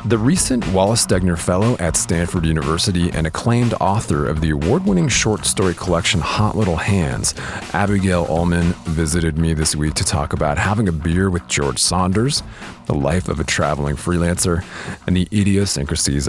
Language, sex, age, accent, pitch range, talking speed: English, male, 30-49, American, 80-100 Hz, 160 wpm